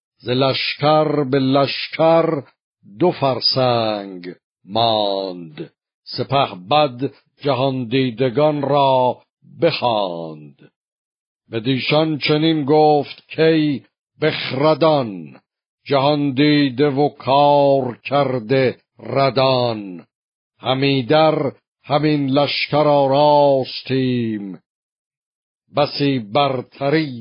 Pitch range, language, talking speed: 120-145 Hz, Persian, 65 wpm